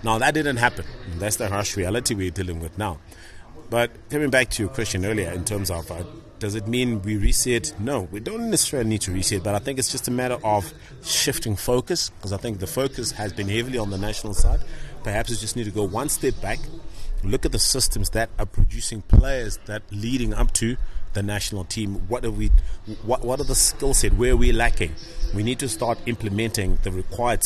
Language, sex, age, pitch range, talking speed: English, male, 30-49, 95-120 Hz, 220 wpm